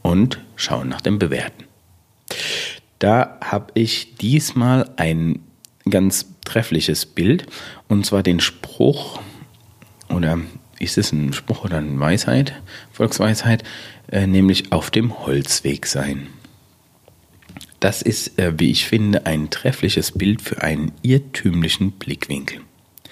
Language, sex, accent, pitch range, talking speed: German, male, German, 80-110 Hz, 115 wpm